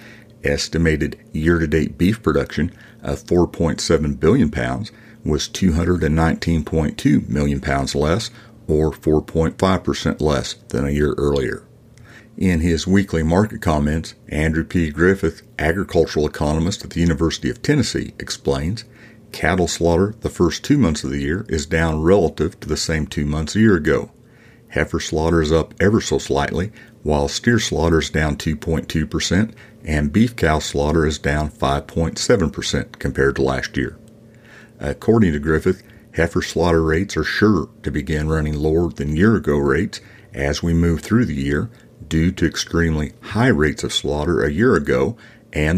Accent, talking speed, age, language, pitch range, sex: American, 150 wpm, 50-69, English, 75-95 Hz, male